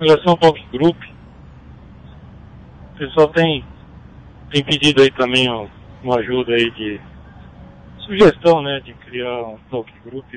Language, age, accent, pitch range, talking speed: Portuguese, 40-59, American, 120-145 Hz, 140 wpm